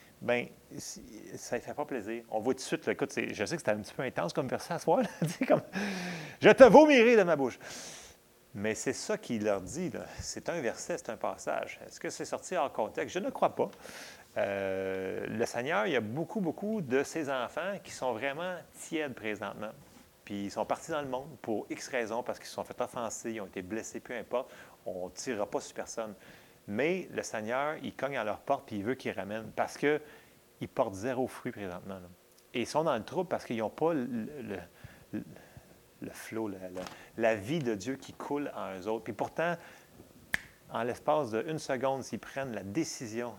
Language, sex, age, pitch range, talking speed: French, male, 30-49, 110-145 Hz, 220 wpm